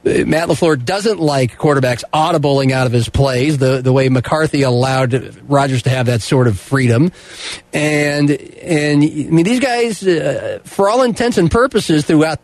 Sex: male